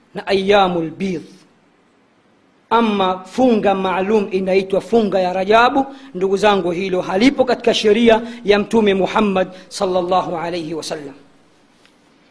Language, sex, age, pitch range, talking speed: Swahili, female, 40-59, 240-345 Hz, 105 wpm